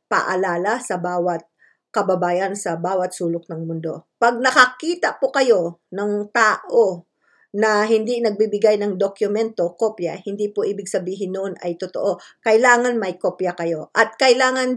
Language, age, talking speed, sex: English, 50-69, 140 wpm, female